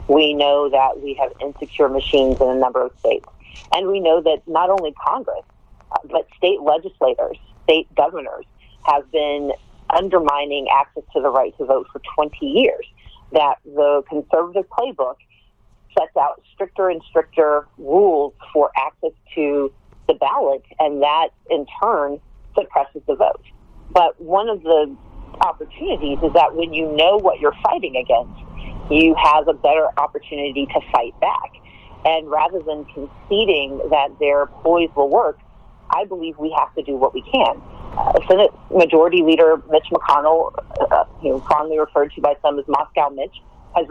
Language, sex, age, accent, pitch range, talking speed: English, female, 40-59, American, 140-160 Hz, 160 wpm